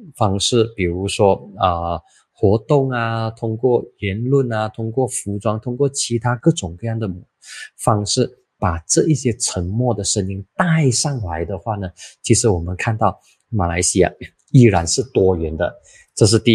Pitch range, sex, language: 95-125 Hz, male, Chinese